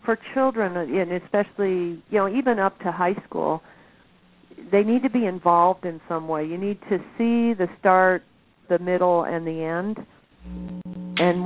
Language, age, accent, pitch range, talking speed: English, 50-69, American, 165-190 Hz, 160 wpm